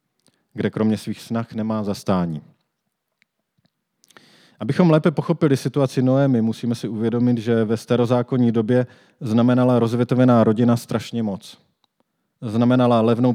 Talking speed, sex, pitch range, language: 110 wpm, male, 115-130 Hz, Czech